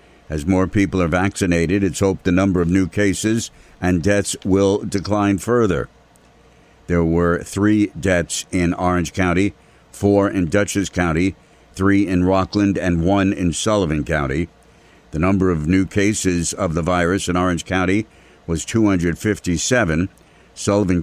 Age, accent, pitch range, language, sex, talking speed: 60-79, American, 90-105 Hz, English, male, 145 wpm